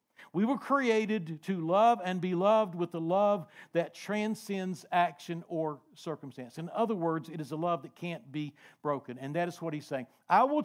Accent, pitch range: American, 155-220 Hz